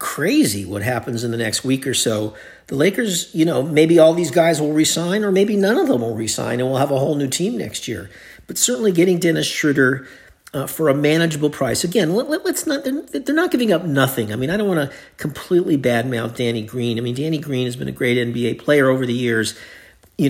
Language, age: English, 50-69